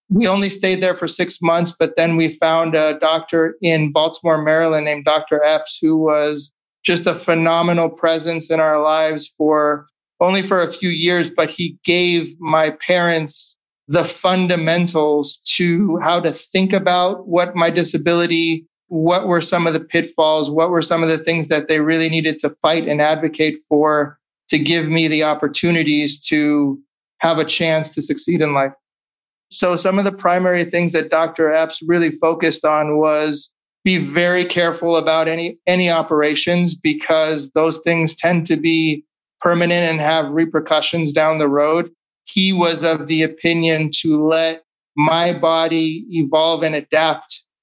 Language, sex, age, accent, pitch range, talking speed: English, male, 20-39, American, 155-170 Hz, 160 wpm